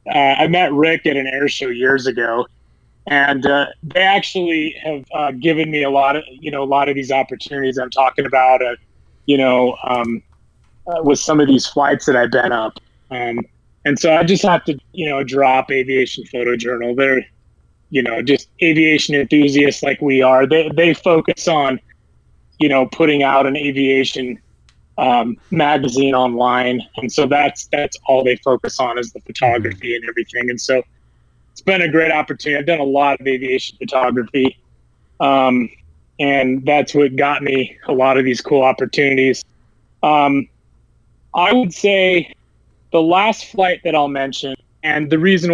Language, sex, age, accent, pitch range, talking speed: English, male, 20-39, American, 130-155 Hz, 175 wpm